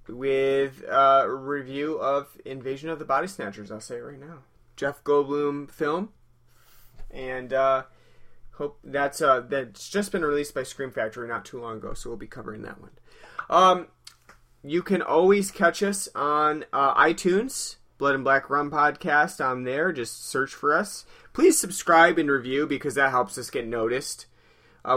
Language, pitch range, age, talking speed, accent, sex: English, 130-160 Hz, 30-49, 170 wpm, American, male